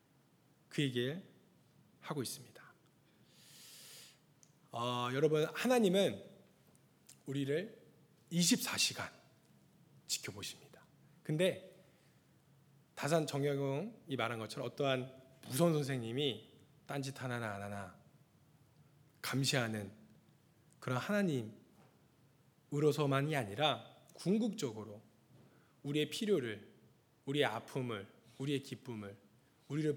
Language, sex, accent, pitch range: Korean, male, native, 120-165 Hz